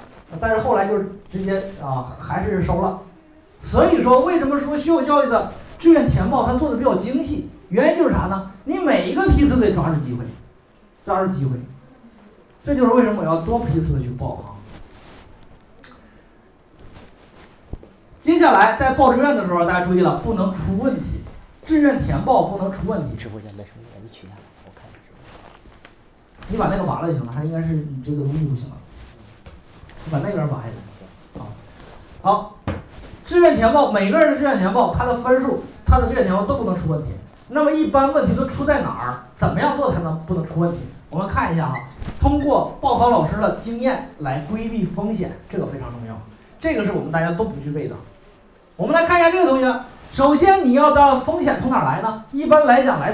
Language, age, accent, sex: Chinese, 40-59, native, male